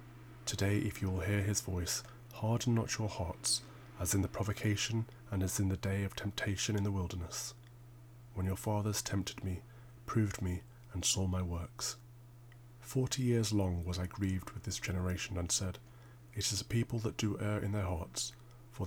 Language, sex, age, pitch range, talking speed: English, male, 30-49, 95-120 Hz, 185 wpm